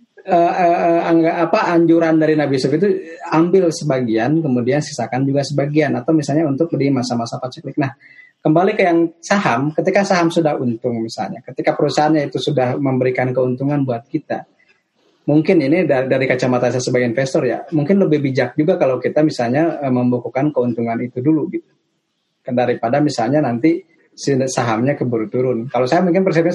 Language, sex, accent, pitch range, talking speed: Indonesian, male, native, 125-160 Hz, 165 wpm